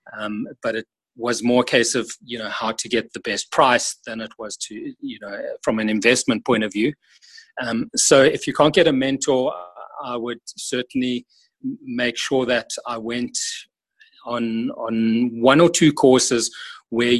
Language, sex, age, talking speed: English, male, 30-49, 180 wpm